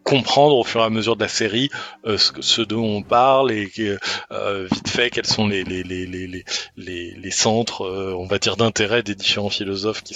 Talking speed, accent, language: 225 wpm, French, French